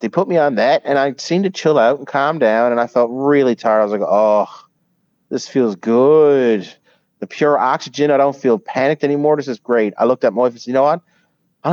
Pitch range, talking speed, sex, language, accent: 110-140 Hz, 245 wpm, male, English, American